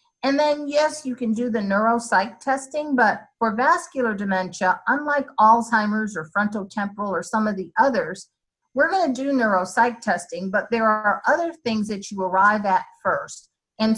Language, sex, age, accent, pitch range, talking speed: English, female, 50-69, American, 175-235 Hz, 165 wpm